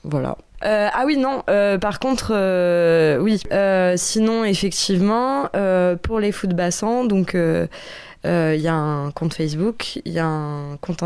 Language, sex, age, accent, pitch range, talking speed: French, female, 20-39, French, 155-190 Hz, 155 wpm